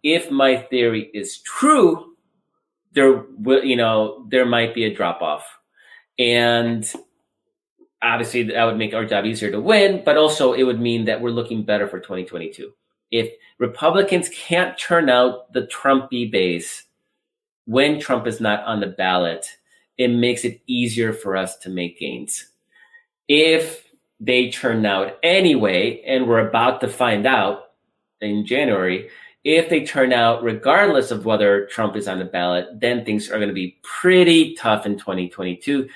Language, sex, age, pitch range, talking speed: English, male, 30-49, 105-150 Hz, 160 wpm